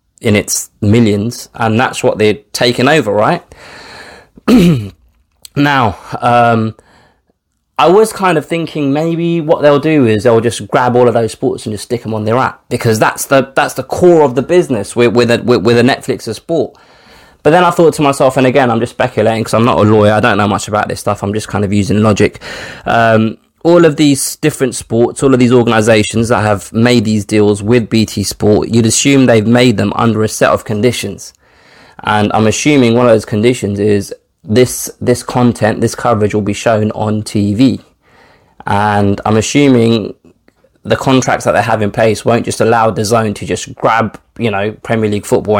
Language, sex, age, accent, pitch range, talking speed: English, male, 20-39, British, 105-130 Hz, 200 wpm